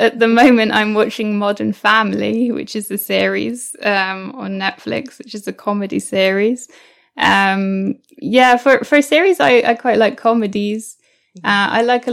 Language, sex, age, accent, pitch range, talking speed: English, female, 10-29, British, 205-240 Hz, 170 wpm